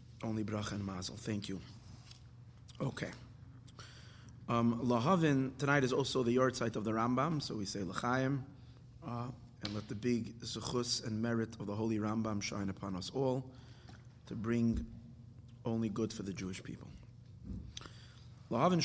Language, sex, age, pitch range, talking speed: English, male, 30-49, 115-125 Hz, 150 wpm